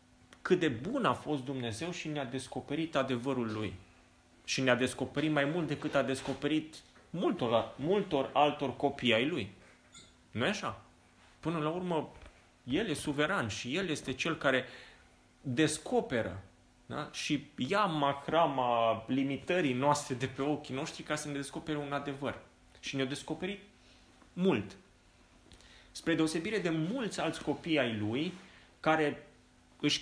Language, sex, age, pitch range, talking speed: Romanian, male, 30-49, 110-155 Hz, 135 wpm